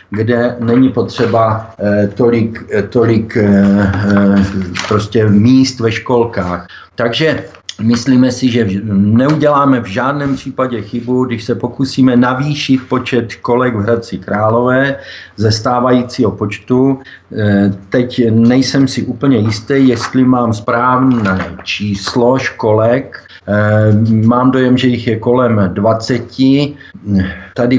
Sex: male